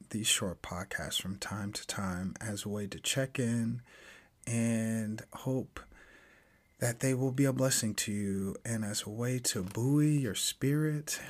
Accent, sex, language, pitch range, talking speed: American, male, English, 100-120 Hz, 165 wpm